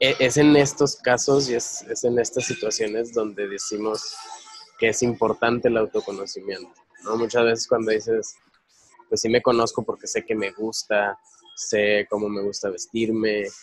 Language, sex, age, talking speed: Spanish, male, 20-39, 160 wpm